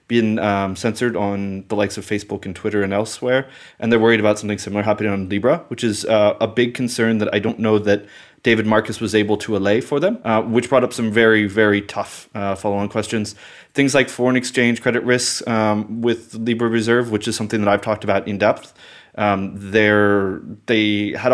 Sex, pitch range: male, 105-120 Hz